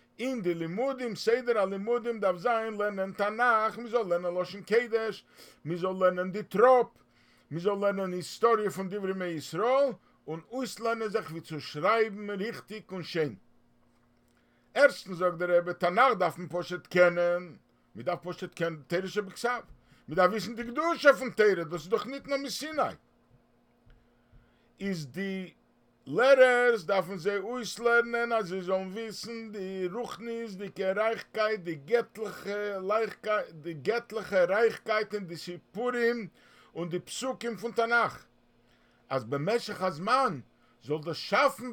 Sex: male